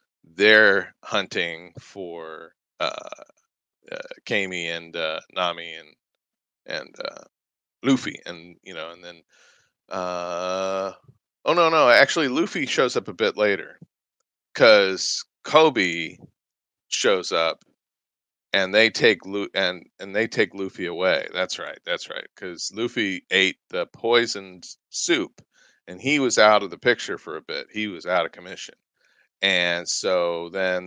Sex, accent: male, American